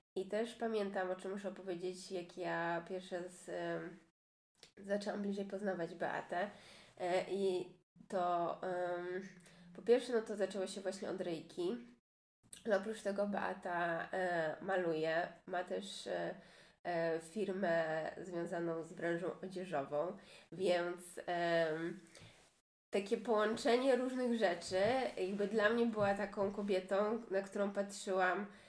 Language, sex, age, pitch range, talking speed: Polish, female, 20-39, 180-225 Hz, 120 wpm